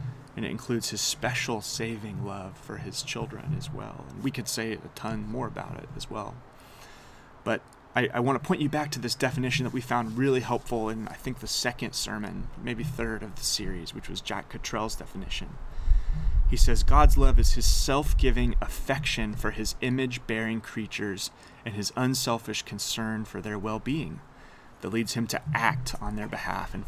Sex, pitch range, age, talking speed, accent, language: male, 100-125 Hz, 30-49, 185 wpm, American, English